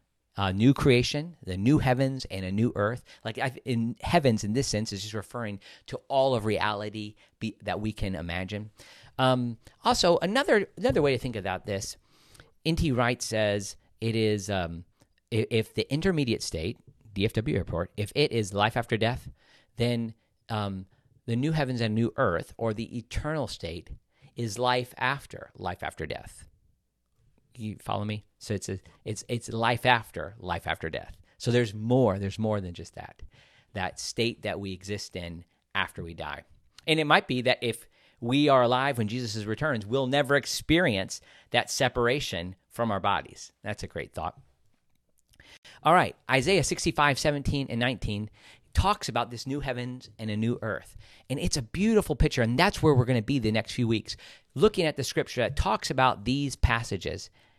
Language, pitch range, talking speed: English, 105-135 Hz, 180 wpm